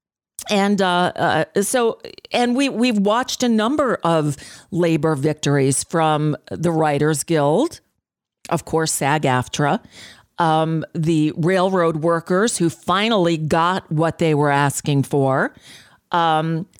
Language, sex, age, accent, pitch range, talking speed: English, female, 40-59, American, 155-205 Hz, 120 wpm